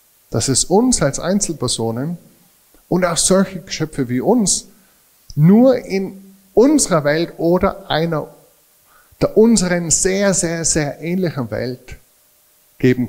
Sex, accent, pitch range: male, German, 125-170 Hz